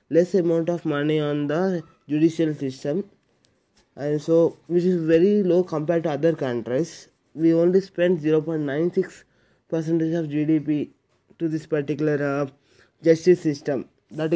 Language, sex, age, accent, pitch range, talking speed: Telugu, male, 20-39, native, 150-180 Hz, 135 wpm